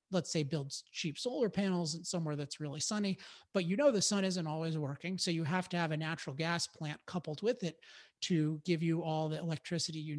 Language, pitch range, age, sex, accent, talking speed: English, 155-185 Hz, 30-49, male, American, 225 wpm